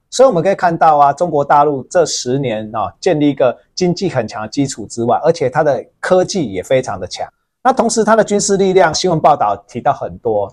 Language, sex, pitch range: Chinese, male, 130-190 Hz